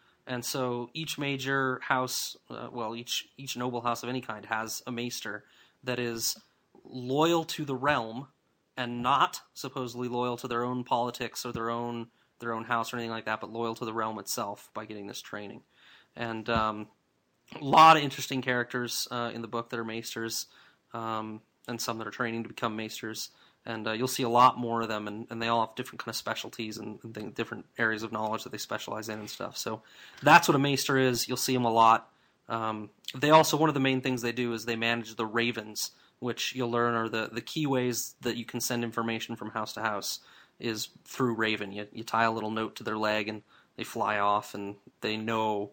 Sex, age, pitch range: male, 30-49, 110-125 Hz